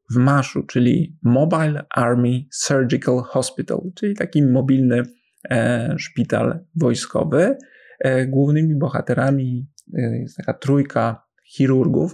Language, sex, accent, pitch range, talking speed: Polish, male, native, 125-150 Hz, 90 wpm